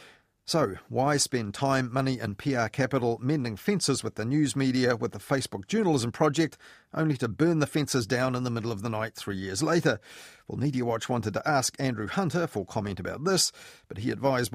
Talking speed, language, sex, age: 200 wpm, English, male, 40-59